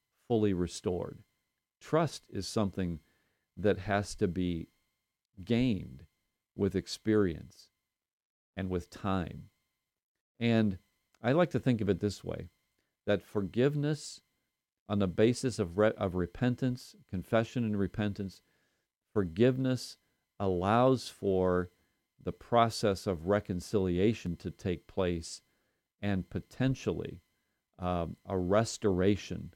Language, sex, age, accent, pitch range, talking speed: English, male, 50-69, American, 90-110 Hz, 100 wpm